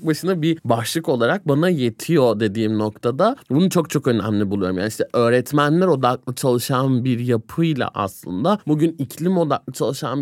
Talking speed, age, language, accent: 145 wpm, 30-49, Turkish, native